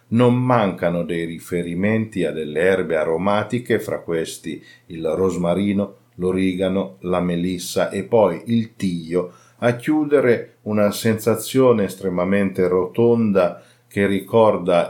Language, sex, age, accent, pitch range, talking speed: Italian, male, 50-69, native, 90-115 Hz, 110 wpm